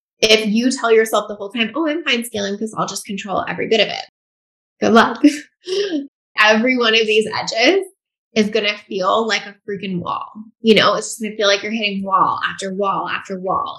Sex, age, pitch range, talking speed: female, 10-29, 190-230 Hz, 210 wpm